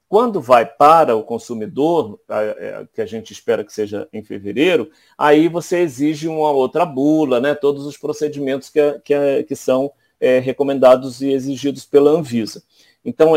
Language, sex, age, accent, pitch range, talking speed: Portuguese, male, 40-59, Brazilian, 125-160 Hz, 155 wpm